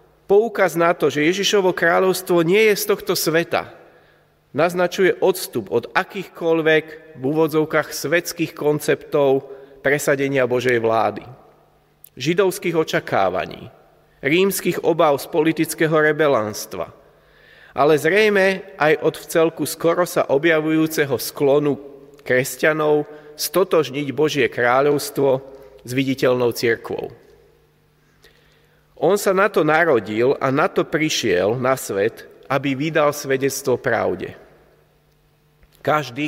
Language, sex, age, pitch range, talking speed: Slovak, male, 30-49, 140-170 Hz, 100 wpm